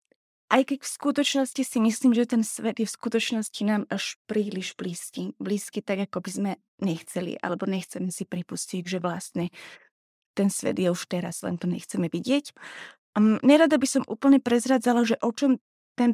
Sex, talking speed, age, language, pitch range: female, 170 wpm, 20-39, Slovak, 205-240 Hz